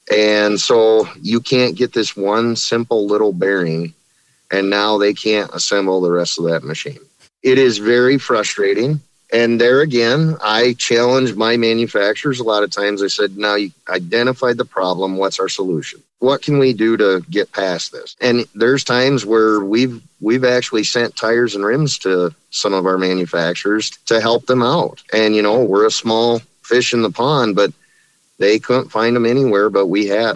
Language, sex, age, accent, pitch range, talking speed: English, male, 30-49, American, 105-130 Hz, 180 wpm